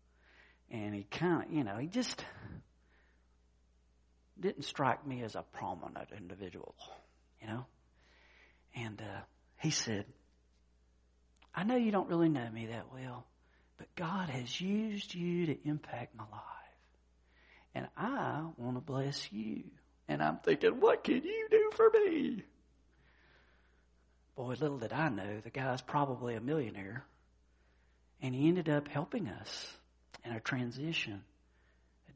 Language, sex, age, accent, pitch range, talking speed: English, male, 50-69, American, 95-160 Hz, 140 wpm